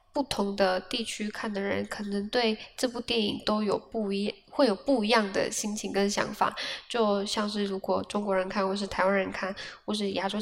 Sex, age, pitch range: female, 10-29, 195-215 Hz